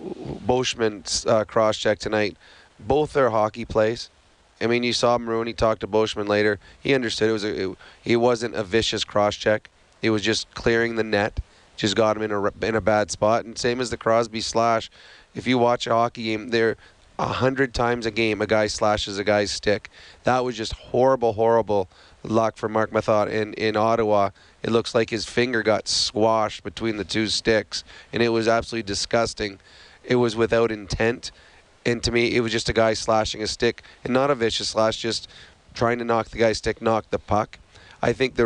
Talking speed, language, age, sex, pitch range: 200 wpm, English, 30-49, male, 105-120 Hz